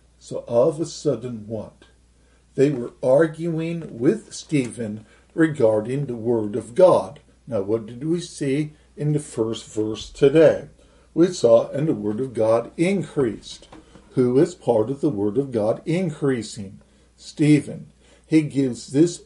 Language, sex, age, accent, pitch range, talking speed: English, male, 50-69, American, 110-155 Hz, 145 wpm